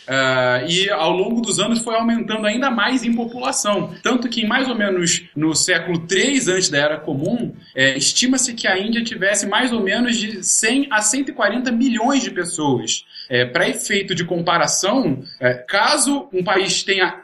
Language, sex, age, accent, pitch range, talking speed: Portuguese, male, 20-39, Brazilian, 155-220 Hz, 175 wpm